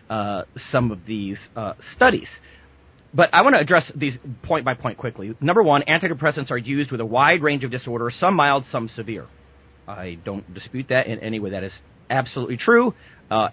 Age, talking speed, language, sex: 40-59, 190 wpm, English, male